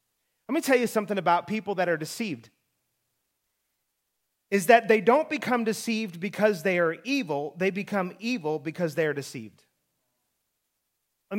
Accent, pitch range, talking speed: American, 155-215 Hz, 150 wpm